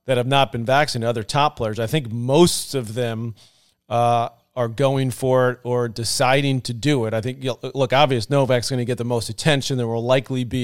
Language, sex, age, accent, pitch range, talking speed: English, male, 40-59, American, 120-140 Hz, 215 wpm